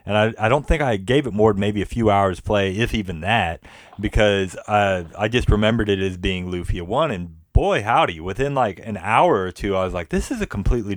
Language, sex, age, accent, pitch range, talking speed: English, male, 30-49, American, 90-115 Hz, 240 wpm